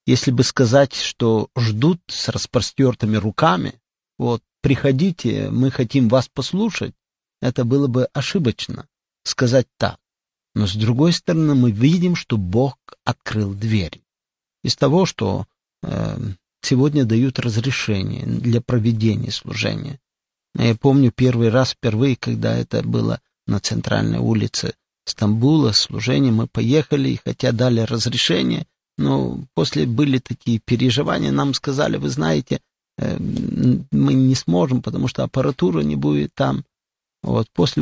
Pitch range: 115-140 Hz